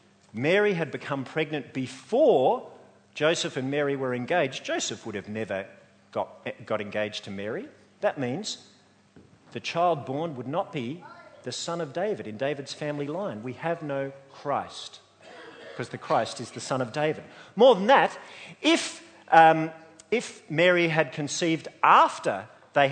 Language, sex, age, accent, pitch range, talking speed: English, male, 50-69, Australian, 125-180 Hz, 150 wpm